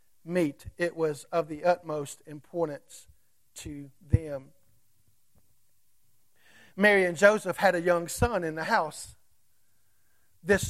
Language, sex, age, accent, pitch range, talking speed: English, male, 50-69, American, 150-195 Hz, 105 wpm